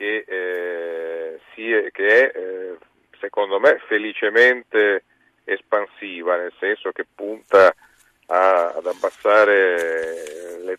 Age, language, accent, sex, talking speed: 40-59, Italian, native, male, 85 wpm